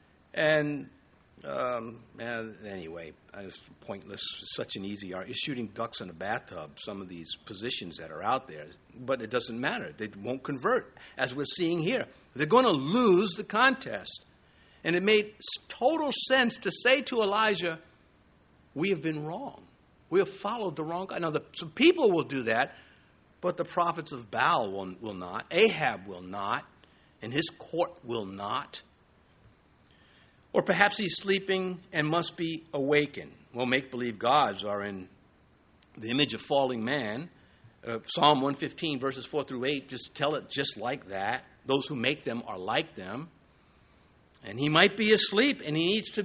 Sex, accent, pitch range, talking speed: male, American, 110-185 Hz, 165 wpm